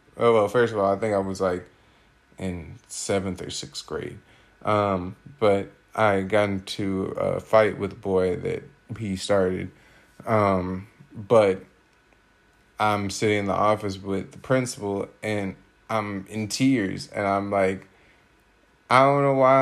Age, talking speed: 20-39, 150 wpm